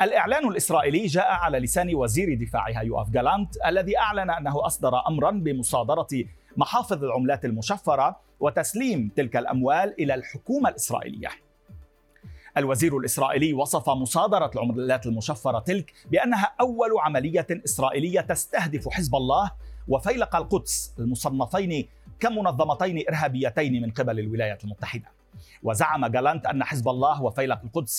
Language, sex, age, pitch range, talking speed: Arabic, male, 40-59, 120-165 Hz, 115 wpm